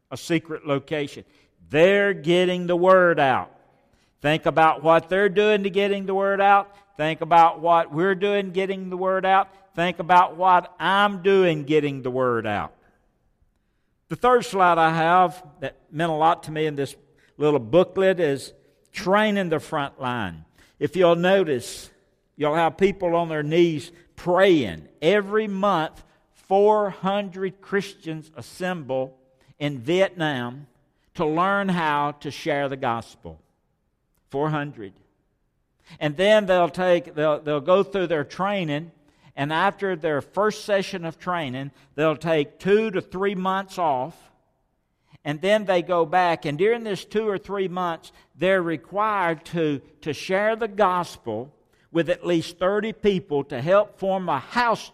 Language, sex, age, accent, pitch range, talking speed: English, male, 60-79, American, 150-195 Hz, 145 wpm